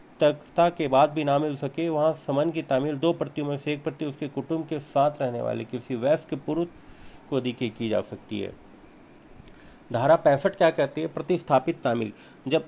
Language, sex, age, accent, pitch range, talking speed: Hindi, male, 40-59, native, 130-150 Hz, 170 wpm